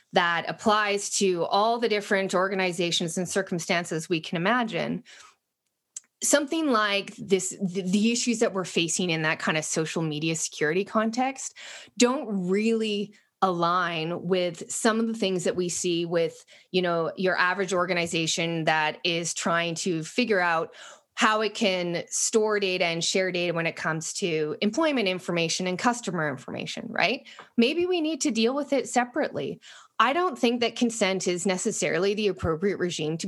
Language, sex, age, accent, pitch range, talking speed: English, female, 20-39, American, 170-220 Hz, 160 wpm